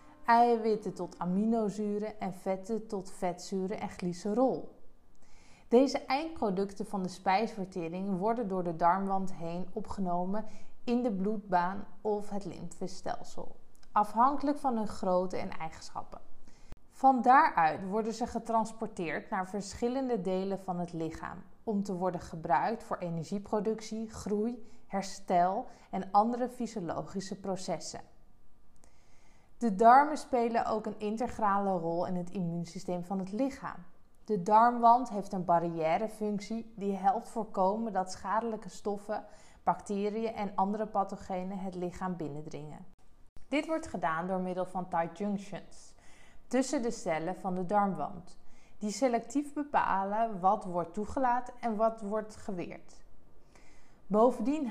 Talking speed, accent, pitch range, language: 120 wpm, Dutch, 185-225 Hz, Dutch